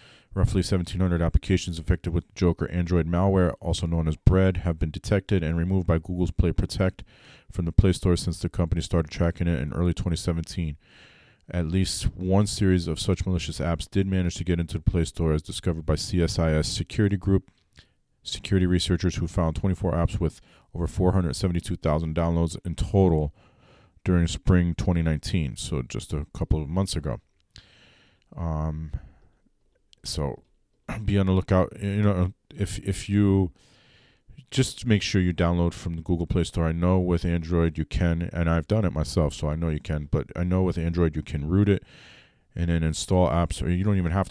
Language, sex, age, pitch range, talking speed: English, male, 40-59, 80-95 Hz, 180 wpm